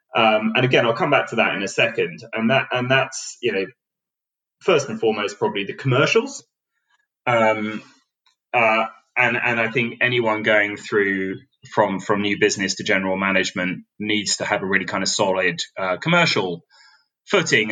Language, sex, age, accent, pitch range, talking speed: English, male, 20-39, British, 100-135 Hz, 170 wpm